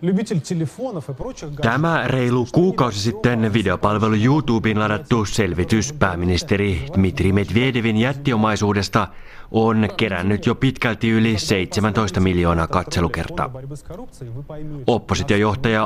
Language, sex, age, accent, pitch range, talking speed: Finnish, male, 30-49, native, 105-125 Hz, 80 wpm